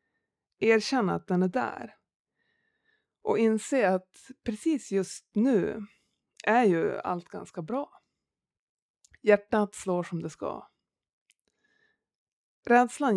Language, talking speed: Swedish, 100 wpm